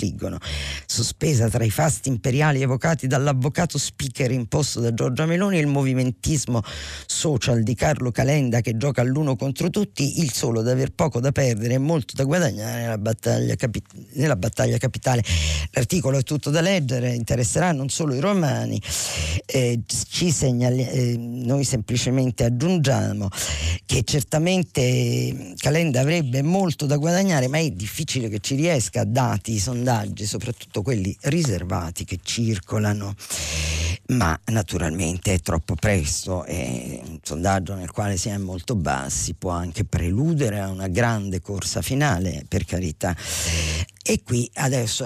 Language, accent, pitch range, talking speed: Italian, native, 100-135 Hz, 140 wpm